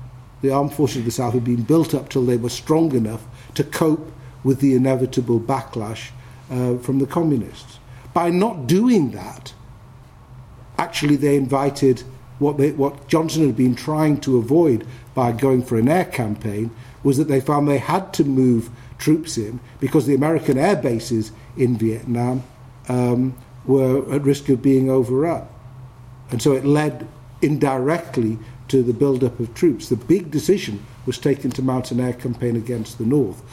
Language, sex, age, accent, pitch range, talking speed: English, male, 50-69, British, 120-140 Hz, 165 wpm